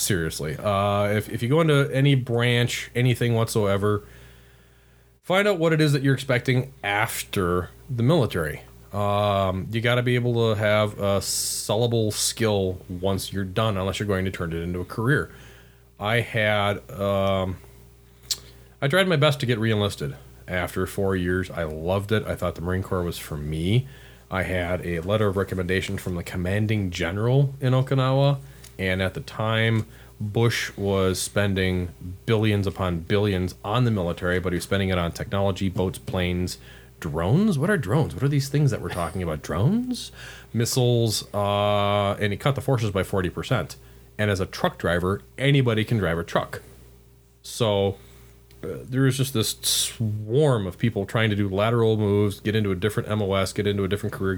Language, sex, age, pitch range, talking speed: English, male, 30-49, 95-120 Hz, 175 wpm